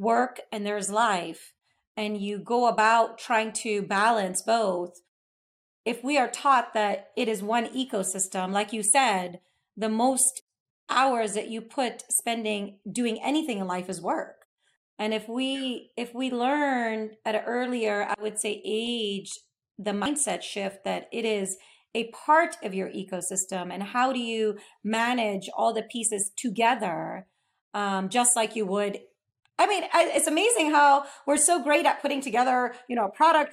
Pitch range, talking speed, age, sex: 205-265 Hz, 160 wpm, 30-49, female